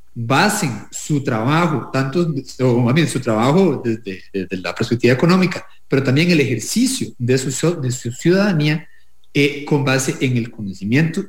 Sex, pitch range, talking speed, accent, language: male, 120-165 Hz, 155 wpm, Mexican, English